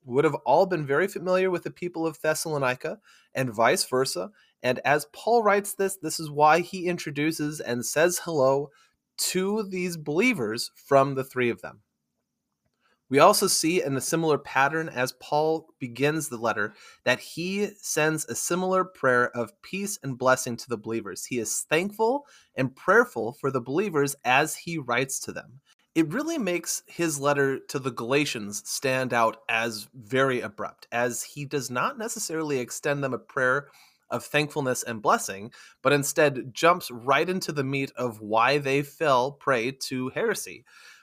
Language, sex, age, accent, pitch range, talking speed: English, male, 30-49, American, 125-170 Hz, 165 wpm